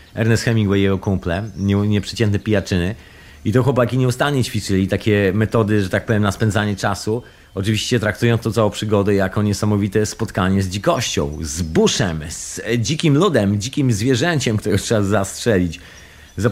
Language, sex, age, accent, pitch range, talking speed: Polish, male, 40-59, native, 100-130 Hz, 150 wpm